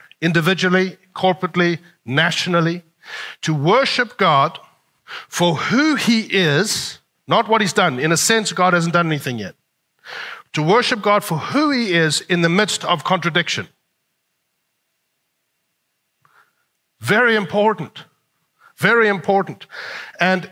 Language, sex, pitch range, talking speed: English, male, 155-205 Hz, 115 wpm